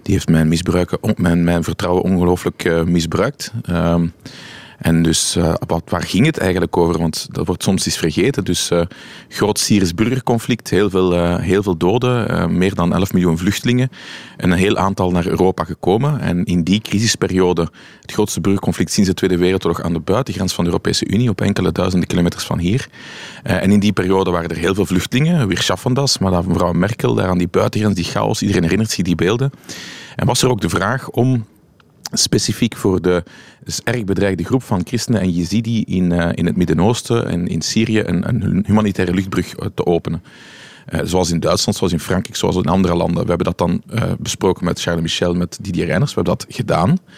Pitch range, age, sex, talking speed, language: 85-110 Hz, 30-49, male, 195 wpm, Dutch